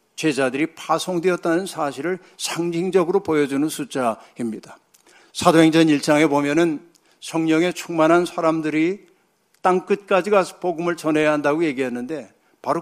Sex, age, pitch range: male, 60-79, 135-170 Hz